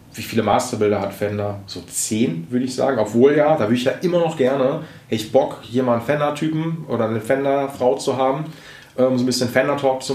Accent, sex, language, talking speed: German, male, German, 215 wpm